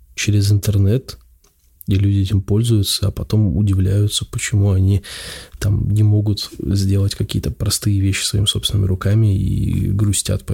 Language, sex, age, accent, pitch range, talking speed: Russian, male, 20-39, native, 95-110 Hz, 135 wpm